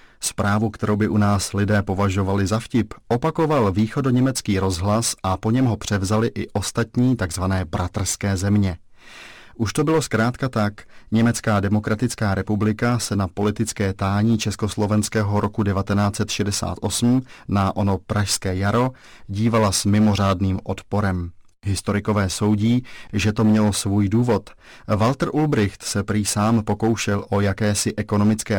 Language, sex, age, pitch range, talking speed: Czech, male, 30-49, 100-115 Hz, 130 wpm